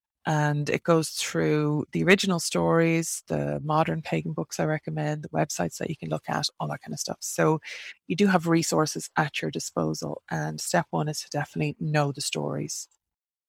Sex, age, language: female, 20-39, English